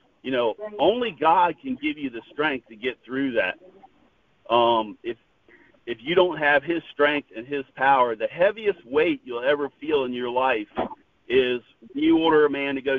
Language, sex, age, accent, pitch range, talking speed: English, male, 50-69, American, 130-210 Hz, 185 wpm